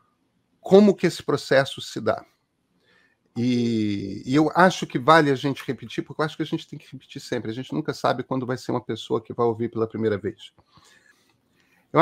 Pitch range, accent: 120-160 Hz, Brazilian